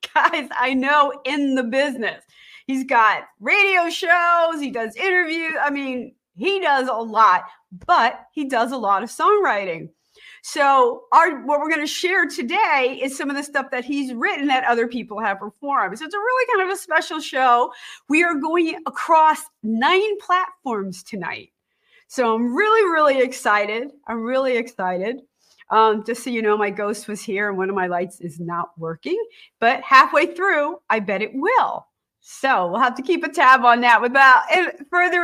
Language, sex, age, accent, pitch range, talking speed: English, female, 40-59, American, 240-365 Hz, 180 wpm